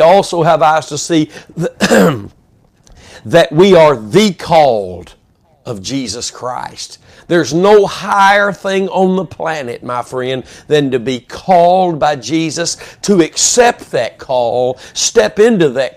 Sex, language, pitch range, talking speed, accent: male, English, 145-190 Hz, 135 wpm, American